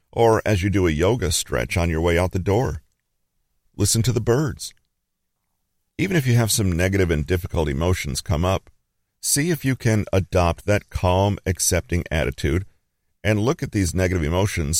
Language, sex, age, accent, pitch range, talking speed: English, male, 50-69, American, 80-105 Hz, 175 wpm